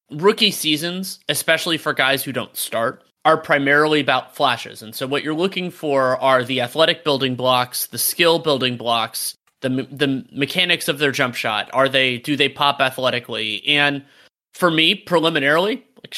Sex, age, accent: male, 30-49, American